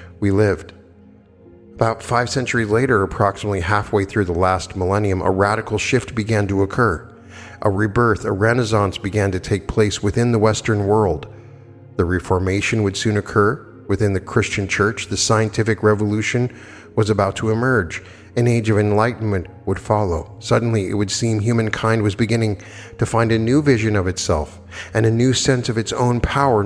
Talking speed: 165 wpm